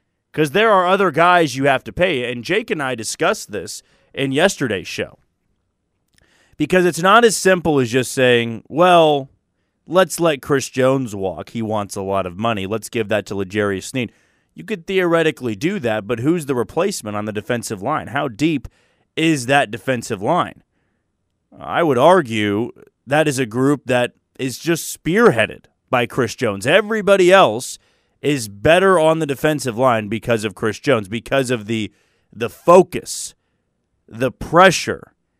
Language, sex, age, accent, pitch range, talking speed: English, male, 30-49, American, 110-155 Hz, 165 wpm